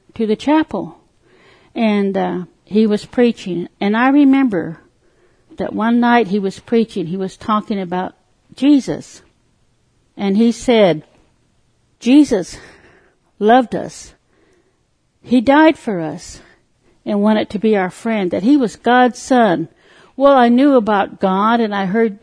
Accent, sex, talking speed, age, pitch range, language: American, female, 140 wpm, 60-79, 200-255 Hz, English